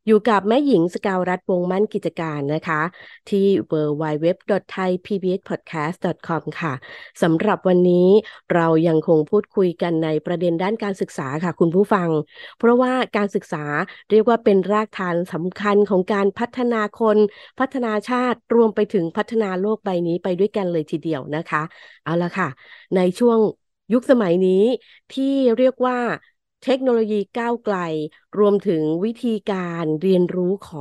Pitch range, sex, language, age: 170-225 Hz, female, Thai, 20-39